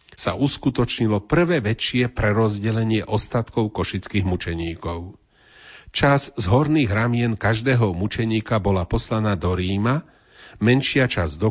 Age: 40-59